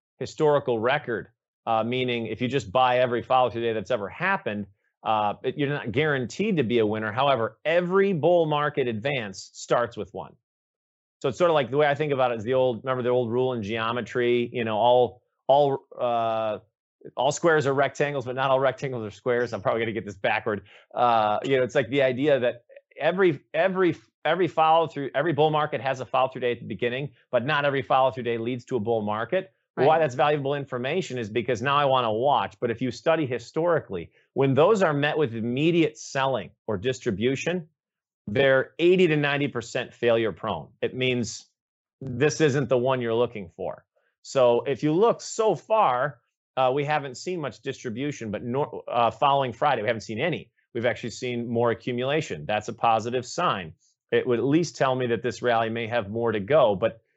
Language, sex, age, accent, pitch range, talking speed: English, male, 30-49, American, 120-145 Hz, 200 wpm